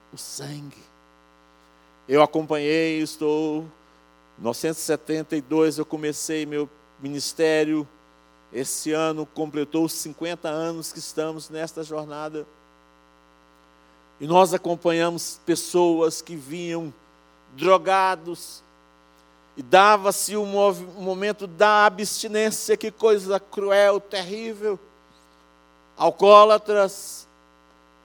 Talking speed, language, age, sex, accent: 85 wpm, Portuguese, 50-69, male, Brazilian